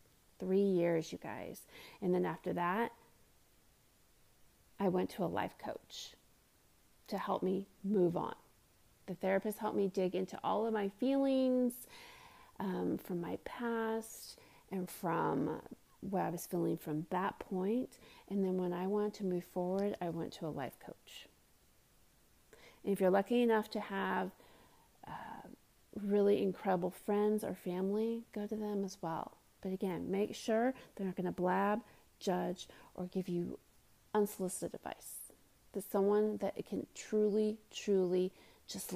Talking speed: 145 wpm